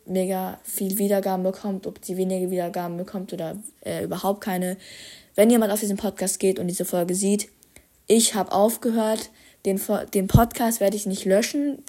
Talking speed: 165 wpm